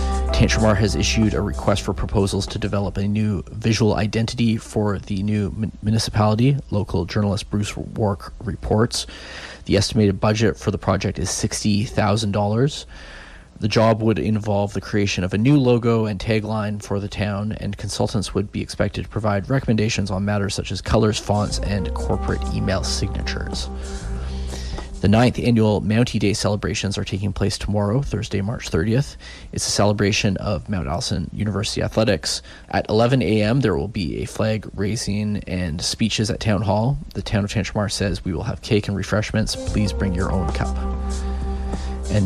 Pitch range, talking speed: 95-110 Hz, 165 wpm